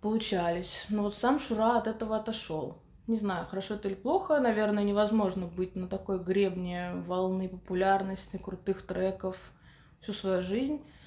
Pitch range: 195-235 Hz